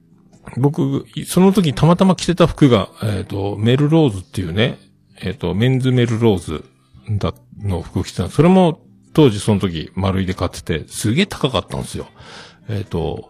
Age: 50-69